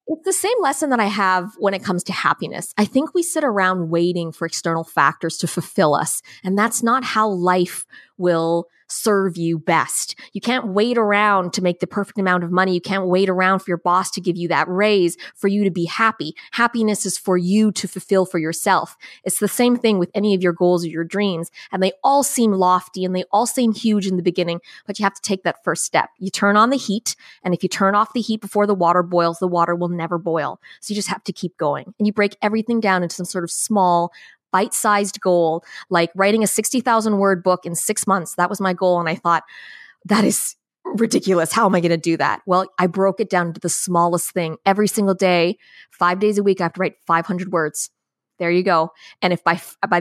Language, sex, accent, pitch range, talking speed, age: English, female, American, 175-210 Hz, 235 wpm, 20-39